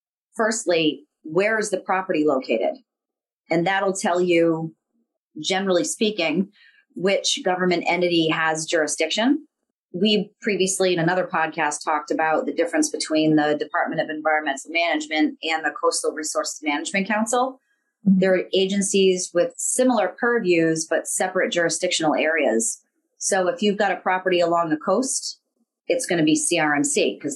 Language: English